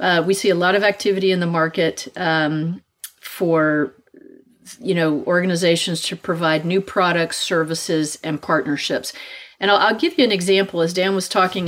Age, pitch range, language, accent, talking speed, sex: 40-59, 165-195 Hz, English, American, 170 wpm, female